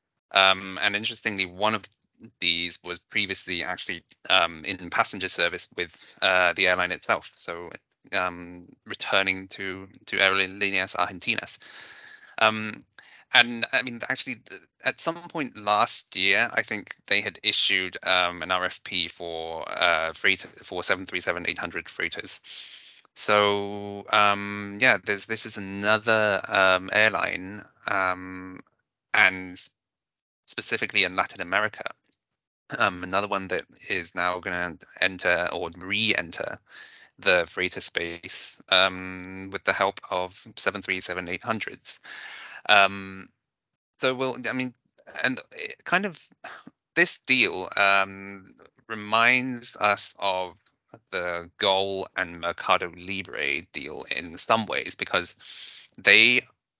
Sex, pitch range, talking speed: male, 90-110 Hz, 120 wpm